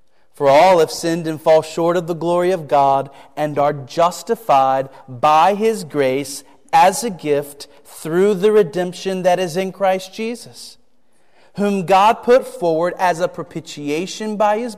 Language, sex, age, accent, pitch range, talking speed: English, male, 40-59, American, 135-190 Hz, 155 wpm